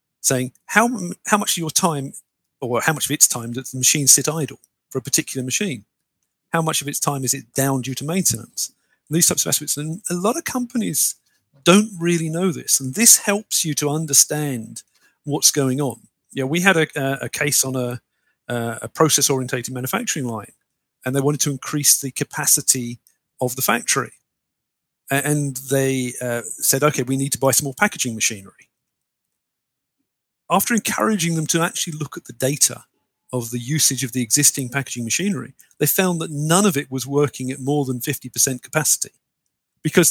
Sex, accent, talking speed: male, British, 185 wpm